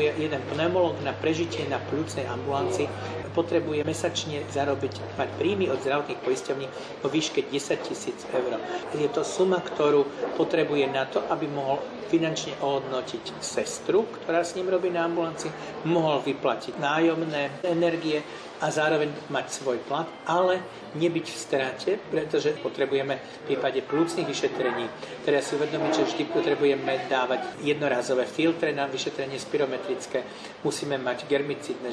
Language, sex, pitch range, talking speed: Slovak, male, 135-165 Hz, 135 wpm